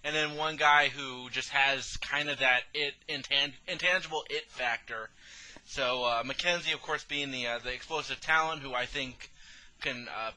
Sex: male